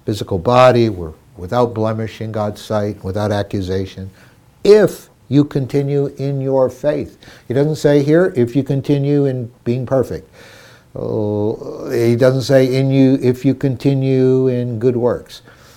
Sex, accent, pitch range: male, American, 105-130 Hz